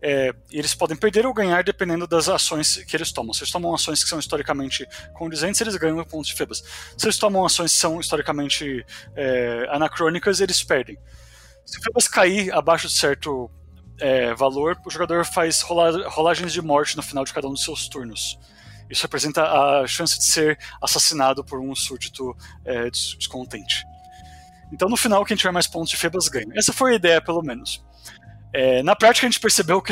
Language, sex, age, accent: Portuguese, male, 20-39, Brazilian